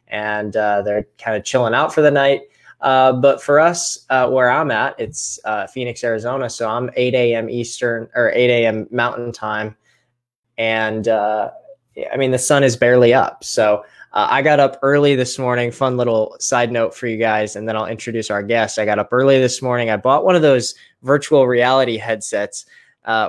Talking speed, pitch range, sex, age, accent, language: 200 wpm, 110-135 Hz, male, 10-29, American, English